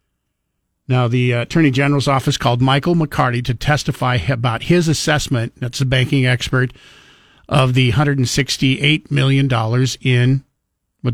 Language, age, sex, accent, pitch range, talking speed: English, 50-69, male, American, 125-145 Hz, 125 wpm